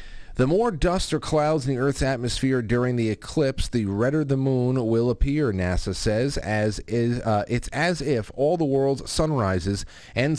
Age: 30-49